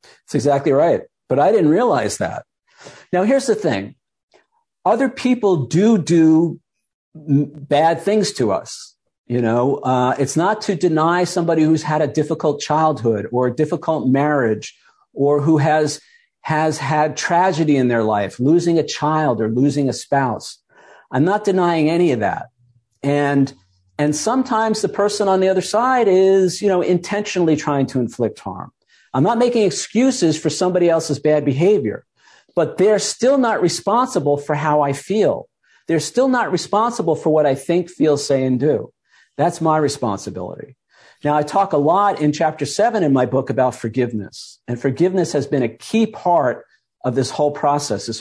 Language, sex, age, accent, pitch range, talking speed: English, male, 50-69, American, 140-190 Hz, 165 wpm